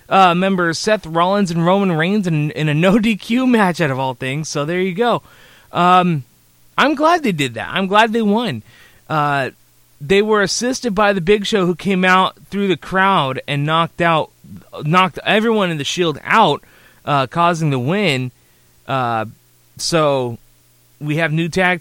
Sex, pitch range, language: male, 150-205 Hz, English